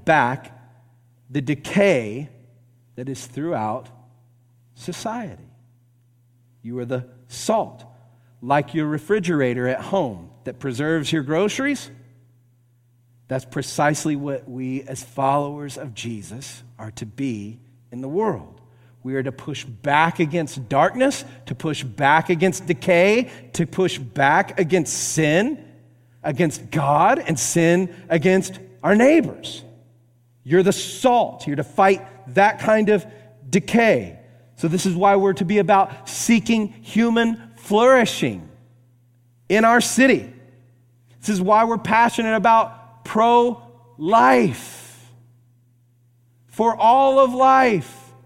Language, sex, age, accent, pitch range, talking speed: English, male, 40-59, American, 120-200 Hz, 115 wpm